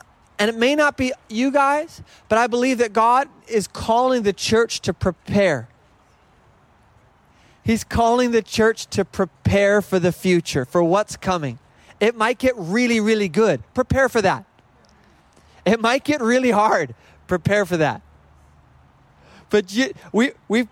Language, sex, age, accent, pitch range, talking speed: English, male, 30-49, American, 185-255 Hz, 150 wpm